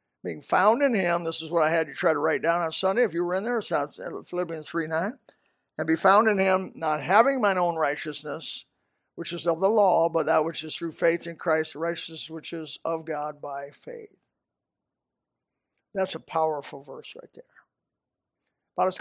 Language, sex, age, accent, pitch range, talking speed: English, male, 60-79, American, 165-220 Hz, 195 wpm